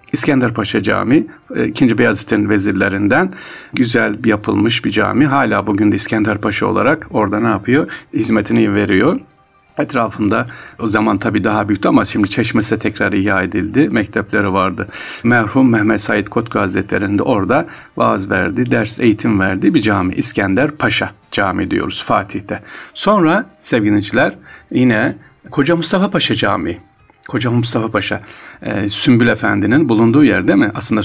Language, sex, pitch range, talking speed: Turkish, male, 105-120 Hz, 135 wpm